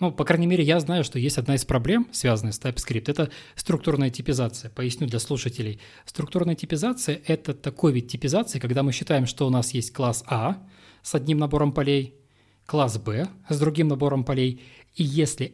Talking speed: 180 wpm